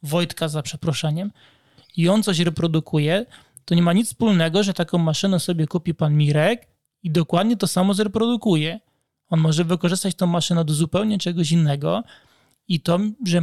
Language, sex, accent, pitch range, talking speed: Polish, male, native, 160-190 Hz, 160 wpm